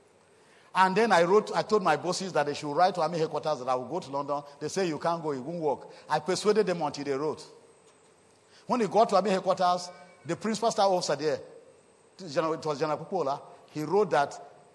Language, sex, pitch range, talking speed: English, male, 150-190 Hz, 215 wpm